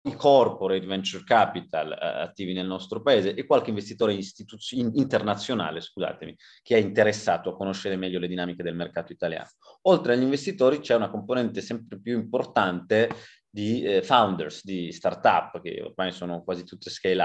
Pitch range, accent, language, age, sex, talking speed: 95-115 Hz, native, Italian, 30-49, male, 160 wpm